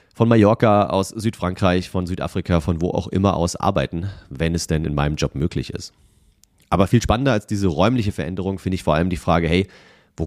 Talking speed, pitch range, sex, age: 205 wpm, 85-110 Hz, male, 30-49